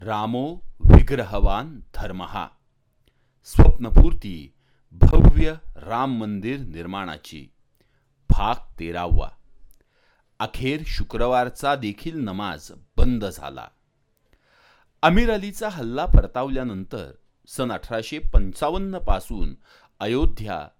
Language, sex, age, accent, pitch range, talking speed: Marathi, male, 40-59, native, 95-140 Hz, 70 wpm